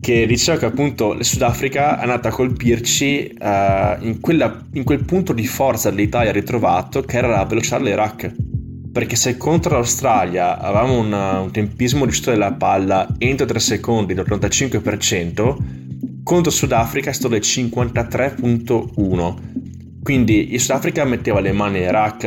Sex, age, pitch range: male, 20-39, 105-125 Hz